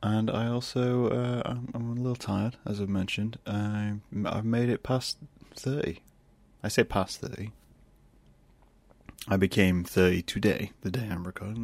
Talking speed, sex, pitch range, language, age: 150 wpm, male, 95-115 Hz, English, 30-49